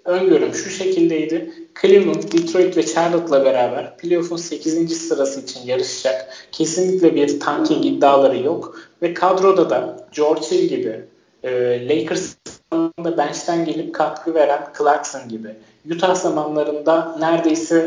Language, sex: Turkish, male